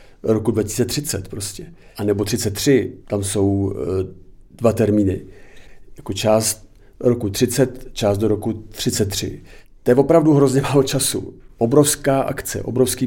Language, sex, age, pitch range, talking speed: Czech, male, 50-69, 105-125 Hz, 125 wpm